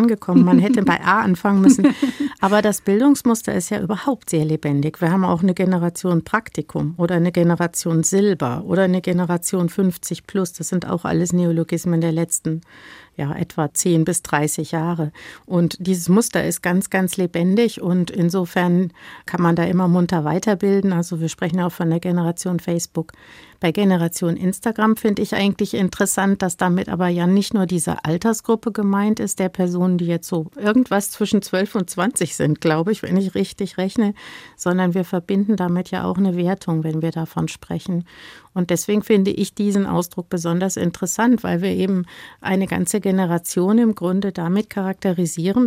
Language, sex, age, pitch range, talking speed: German, female, 50-69, 170-200 Hz, 170 wpm